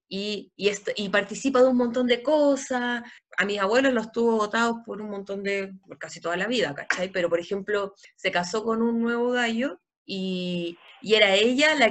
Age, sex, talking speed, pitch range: 20-39, female, 200 wpm, 190-225 Hz